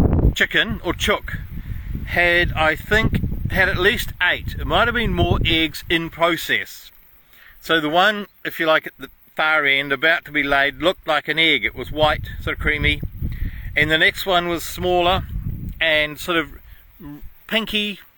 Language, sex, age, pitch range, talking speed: English, male, 40-59, 130-175 Hz, 170 wpm